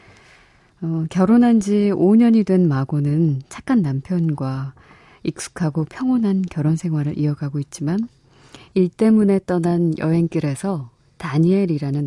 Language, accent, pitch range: Korean, native, 140-190 Hz